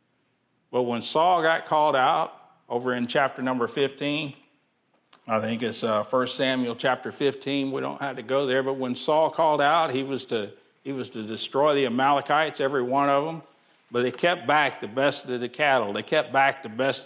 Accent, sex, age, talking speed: American, male, 50-69, 200 wpm